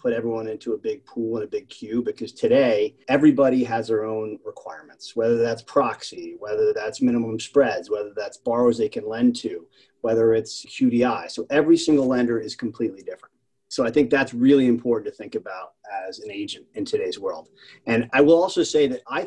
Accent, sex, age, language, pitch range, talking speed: American, male, 30-49, English, 120-165 Hz, 195 wpm